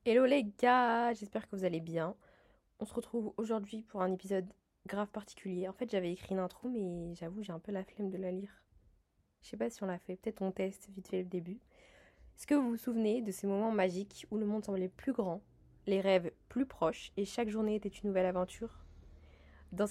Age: 20-39